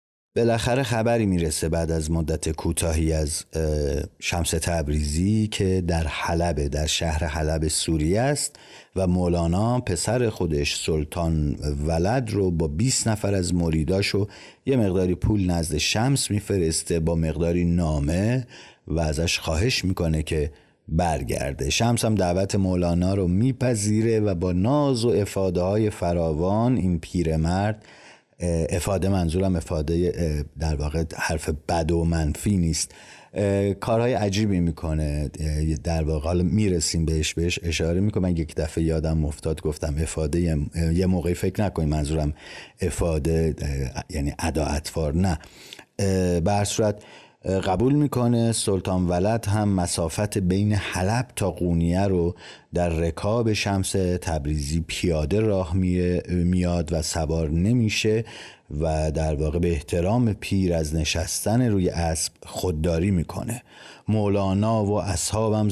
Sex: male